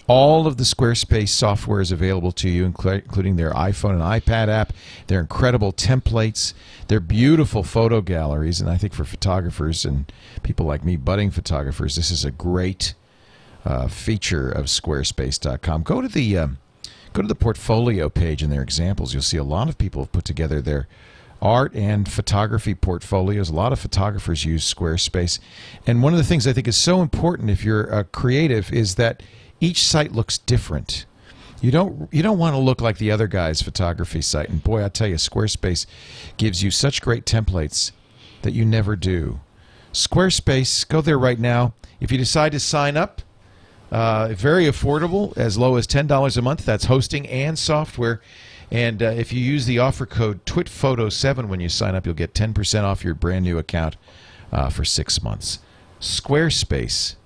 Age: 50-69